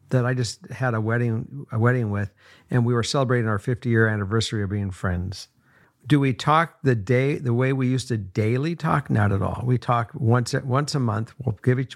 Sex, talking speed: male, 225 wpm